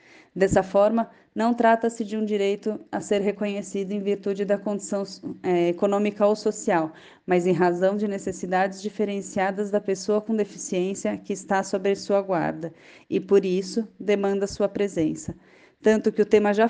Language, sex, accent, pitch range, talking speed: Portuguese, female, Brazilian, 185-215 Hz, 155 wpm